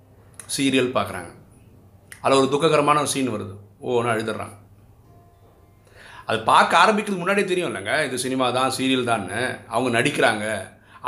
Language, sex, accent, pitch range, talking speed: Tamil, male, native, 105-130 Hz, 125 wpm